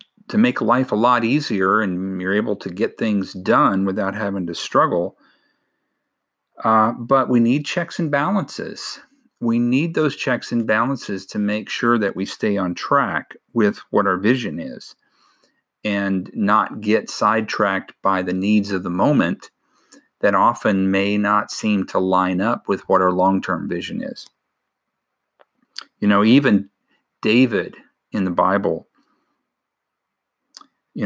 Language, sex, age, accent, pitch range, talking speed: English, male, 50-69, American, 100-140 Hz, 145 wpm